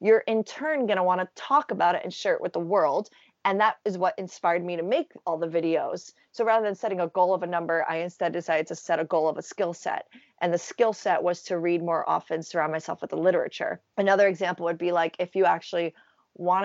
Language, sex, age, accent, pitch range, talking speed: English, female, 30-49, American, 165-195 Hz, 250 wpm